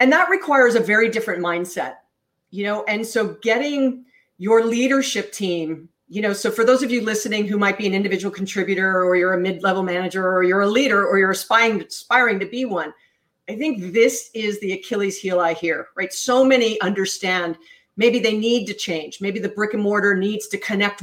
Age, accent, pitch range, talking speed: 40-59, American, 185-230 Hz, 205 wpm